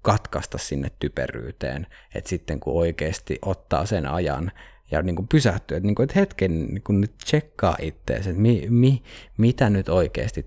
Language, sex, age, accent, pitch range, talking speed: Finnish, male, 20-39, native, 80-105 Hz, 160 wpm